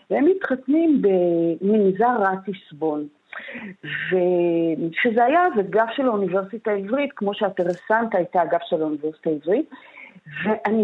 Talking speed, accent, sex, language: 110 wpm, native, female, Hebrew